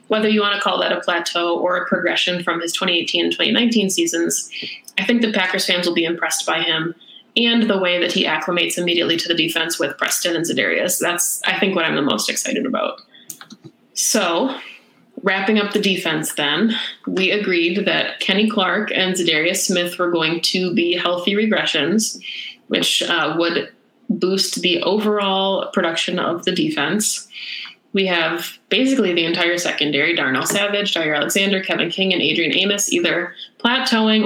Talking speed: 170 wpm